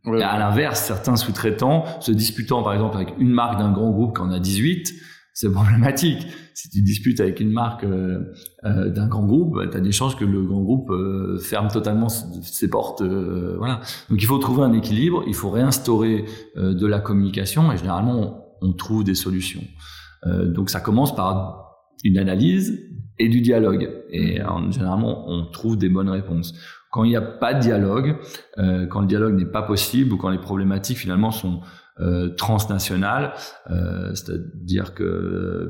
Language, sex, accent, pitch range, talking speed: French, male, French, 90-110 Hz, 175 wpm